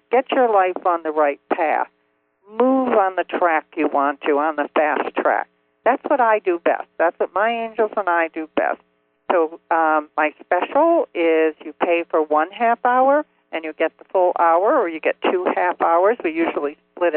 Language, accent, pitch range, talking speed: English, American, 160-230 Hz, 200 wpm